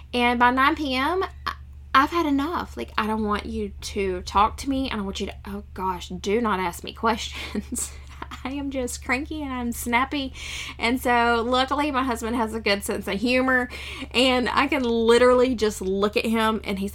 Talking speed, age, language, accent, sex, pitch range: 200 wpm, 10-29, English, American, female, 200-250 Hz